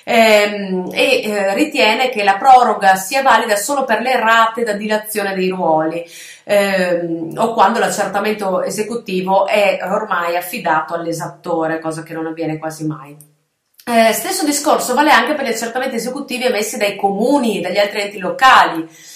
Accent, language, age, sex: native, Italian, 30-49, female